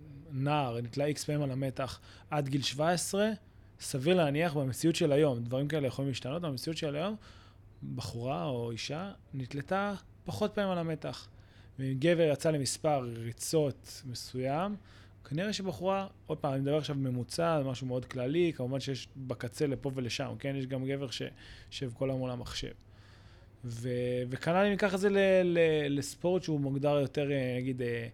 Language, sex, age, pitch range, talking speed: Hebrew, male, 20-39, 120-160 Hz, 155 wpm